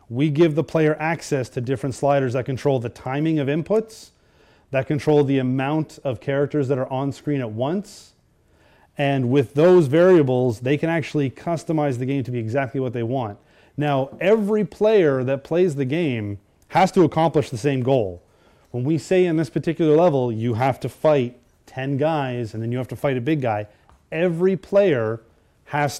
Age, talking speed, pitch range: 30-49, 185 wpm, 125-155 Hz